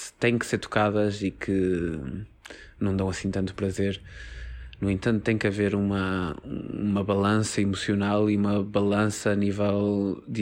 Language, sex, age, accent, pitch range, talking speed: Portuguese, male, 20-39, Portuguese, 100-115 Hz, 150 wpm